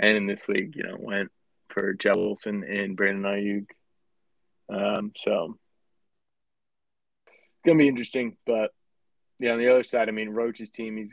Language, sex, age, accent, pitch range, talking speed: English, male, 20-39, American, 100-110 Hz, 155 wpm